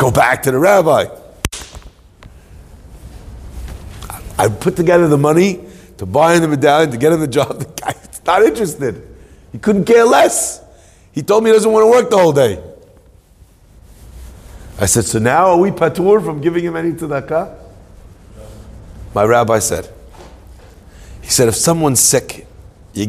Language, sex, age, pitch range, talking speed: English, male, 50-69, 90-150 Hz, 155 wpm